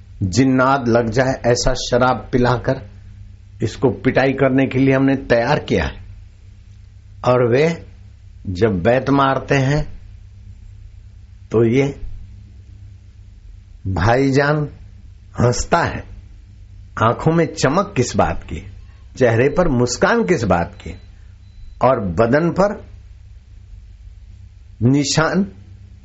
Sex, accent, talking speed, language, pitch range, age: male, native, 95 wpm, Hindi, 95-120 Hz, 60-79